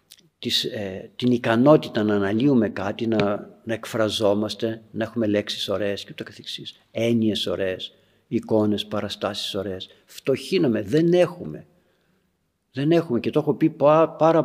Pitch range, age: 110-155 Hz, 60-79